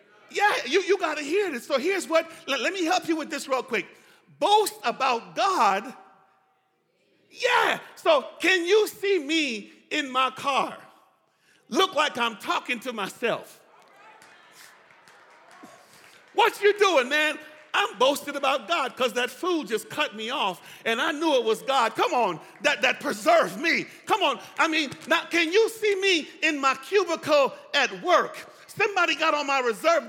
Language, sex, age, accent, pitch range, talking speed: English, male, 50-69, American, 235-340 Hz, 165 wpm